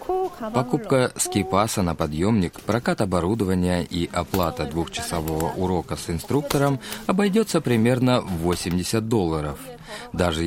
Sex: male